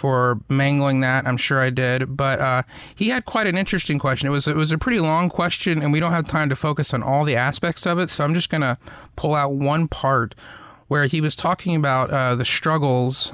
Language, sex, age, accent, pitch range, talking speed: English, male, 30-49, American, 125-145 Hz, 235 wpm